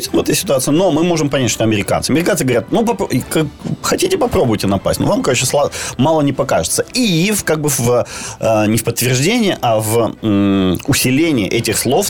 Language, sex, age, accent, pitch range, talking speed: Ukrainian, male, 30-49, native, 105-145 Hz, 160 wpm